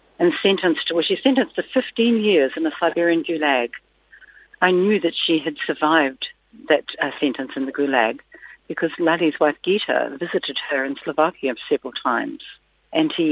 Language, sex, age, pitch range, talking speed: English, female, 60-79, 140-180 Hz, 165 wpm